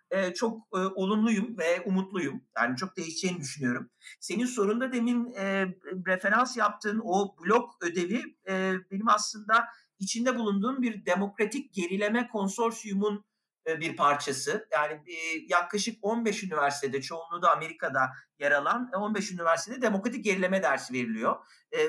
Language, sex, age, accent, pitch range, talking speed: Turkish, male, 50-69, native, 170-230 Hz, 130 wpm